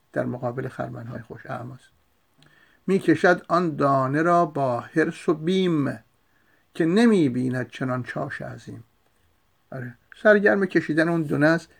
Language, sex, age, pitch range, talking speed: Persian, male, 50-69, 110-165 Hz, 125 wpm